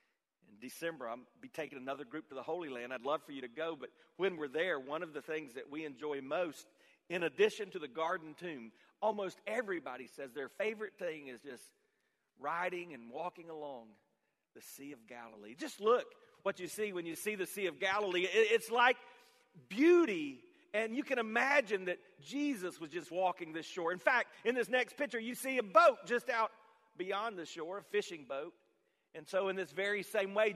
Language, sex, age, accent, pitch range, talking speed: English, male, 40-59, American, 175-240 Hz, 200 wpm